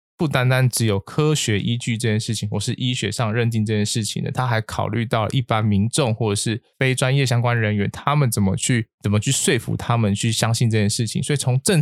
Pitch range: 105-135 Hz